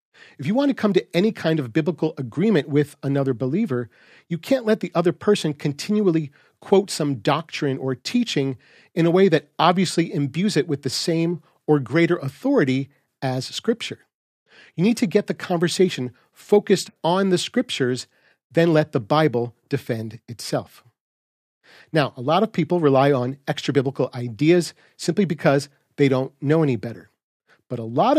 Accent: American